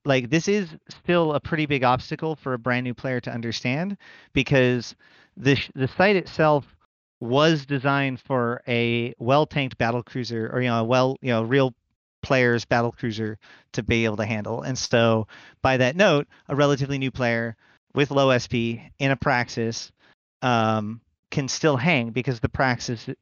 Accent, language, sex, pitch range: American, English, male, 120-140 Hz